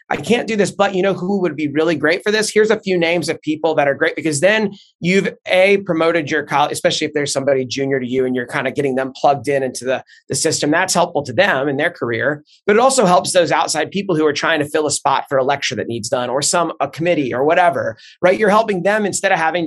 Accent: American